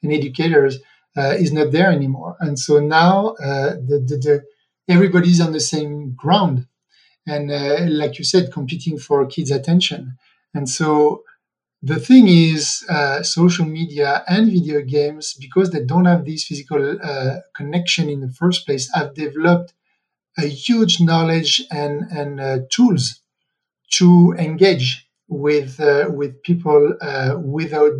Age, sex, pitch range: 50-69, male, 140-170 Hz